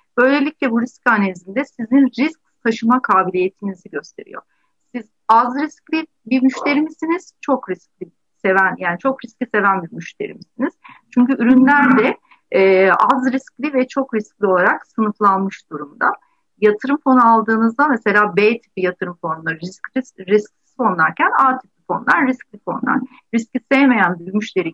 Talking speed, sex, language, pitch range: 140 wpm, female, Turkish, 195-265 Hz